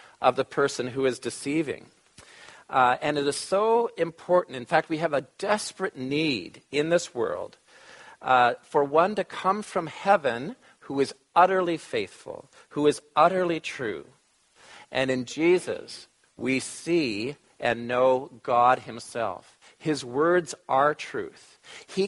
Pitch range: 130-175 Hz